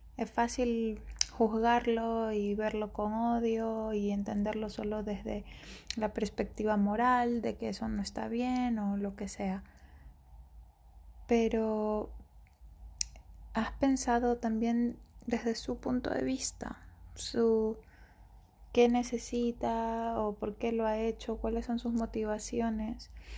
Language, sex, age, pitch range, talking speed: Spanish, female, 20-39, 205-230 Hz, 120 wpm